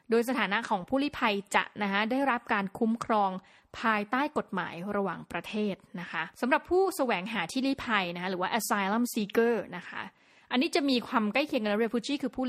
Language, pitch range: Thai, 195-245 Hz